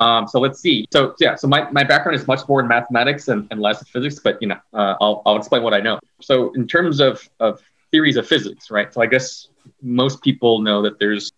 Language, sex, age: English, male, 30-49